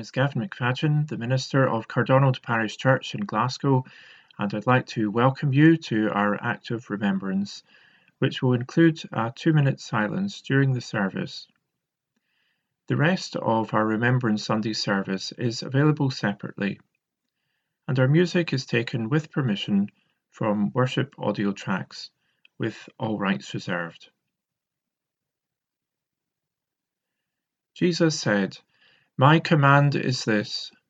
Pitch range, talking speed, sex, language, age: 115-155 Hz, 120 wpm, male, English, 40-59